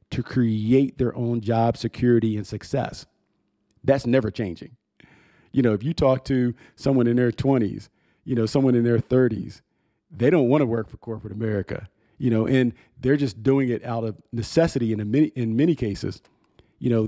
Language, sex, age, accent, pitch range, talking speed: English, male, 40-59, American, 110-130 Hz, 180 wpm